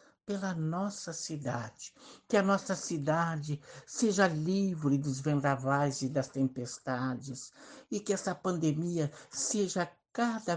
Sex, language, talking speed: male, Portuguese, 115 wpm